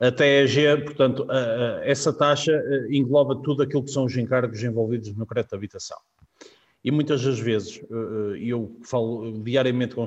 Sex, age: male, 50-69